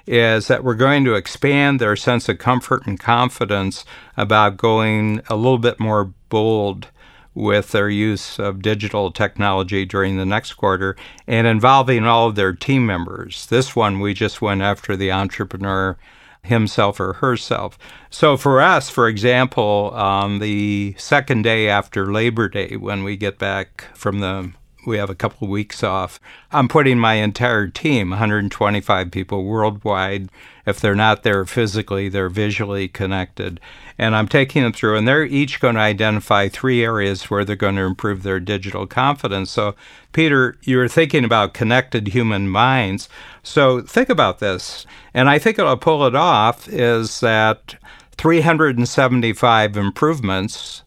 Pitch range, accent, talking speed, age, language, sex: 100-120 Hz, American, 155 wpm, 60-79, English, male